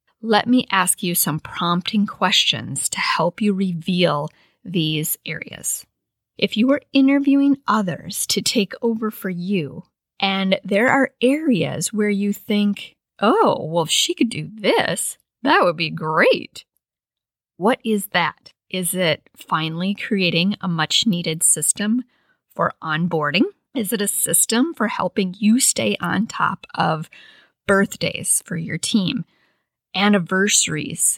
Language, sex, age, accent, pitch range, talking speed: English, female, 40-59, American, 175-230 Hz, 135 wpm